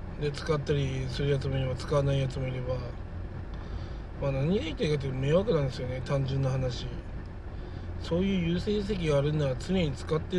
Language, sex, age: Japanese, male, 20-39